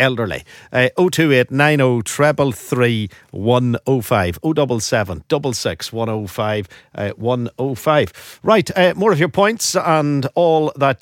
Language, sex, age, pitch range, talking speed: English, male, 50-69, 110-145 Hz, 95 wpm